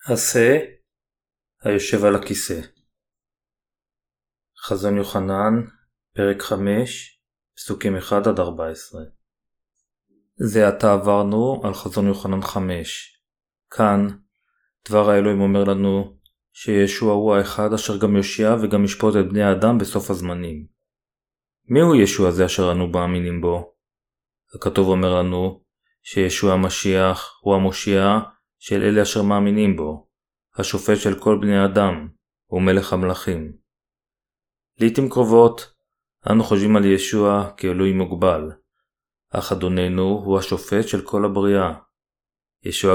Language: Hebrew